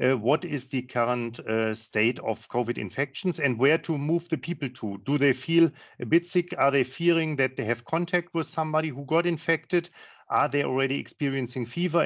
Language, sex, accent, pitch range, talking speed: English, male, German, 120-155 Hz, 200 wpm